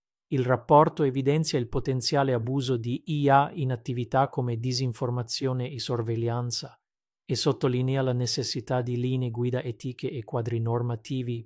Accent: native